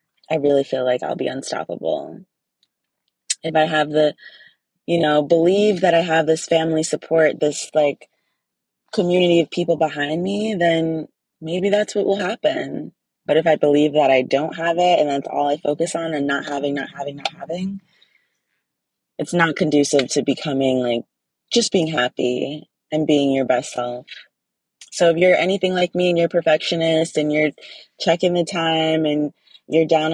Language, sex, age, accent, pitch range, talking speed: English, female, 20-39, American, 150-180 Hz, 175 wpm